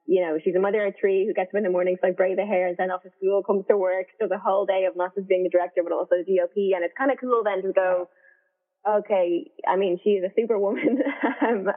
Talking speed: 280 wpm